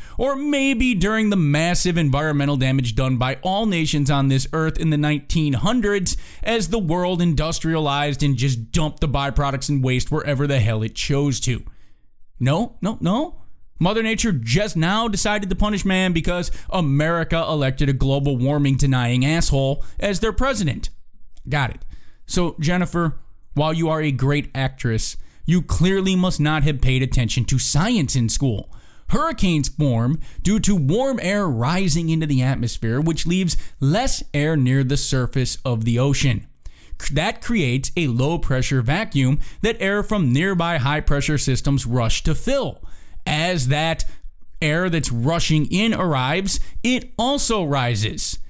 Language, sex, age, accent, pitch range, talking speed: English, male, 20-39, American, 130-175 Hz, 150 wpm